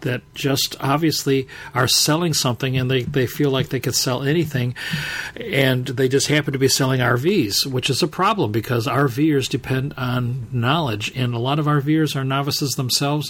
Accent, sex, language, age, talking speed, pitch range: American, male, English, 50-69, 180 wpm, 125-145 Hz